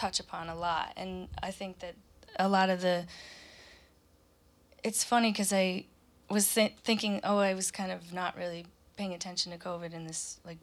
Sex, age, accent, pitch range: female, 20-39, American, 175-205 Hz